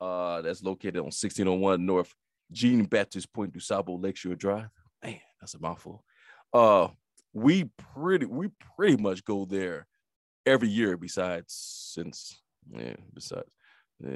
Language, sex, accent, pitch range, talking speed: English, male, American, 90-110 Hz, 125 wpm